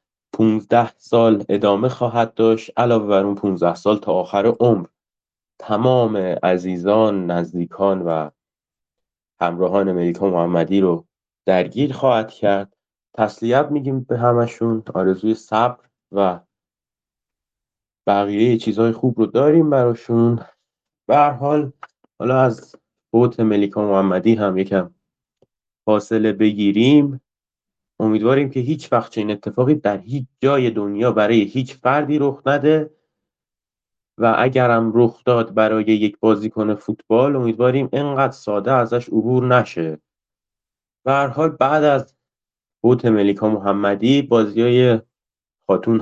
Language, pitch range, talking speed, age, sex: Persian, 100-125 Hz, 110 wpm, 30-49, male